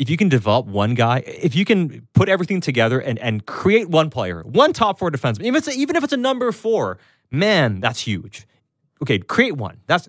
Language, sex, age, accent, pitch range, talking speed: English, male, 30-49, American, 100-135 Hz, 225 wpm